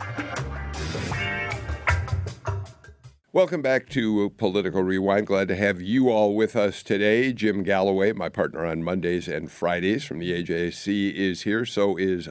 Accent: American